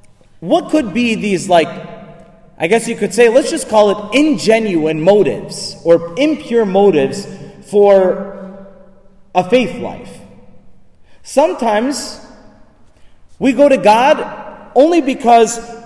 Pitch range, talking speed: 155-225 Hz, 115 wpm